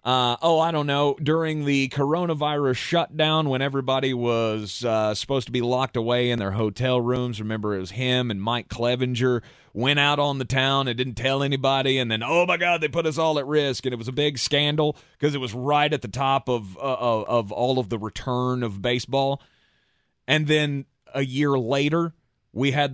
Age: 30-49